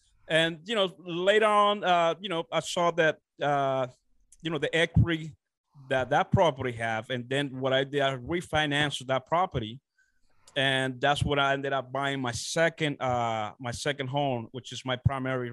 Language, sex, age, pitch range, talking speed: English, male, 30-49, 130-165 Hz, 180 wpm